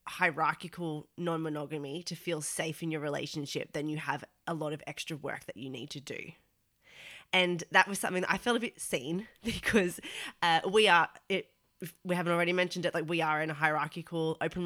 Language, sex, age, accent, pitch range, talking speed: English, female, 20-39, Australian, 155-180 Hz, 200 wpm